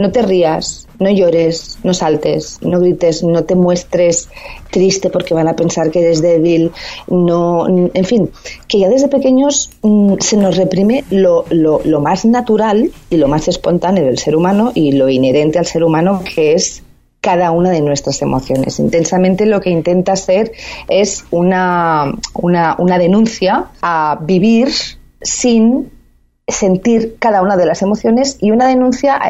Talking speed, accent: 160 wpm, Spanish